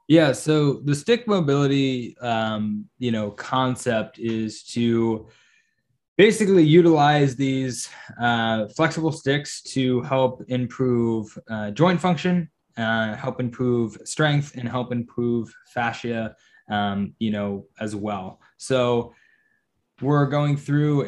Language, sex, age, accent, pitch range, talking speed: English, male, 10-29, American, 110-135 Hz, 115 wpm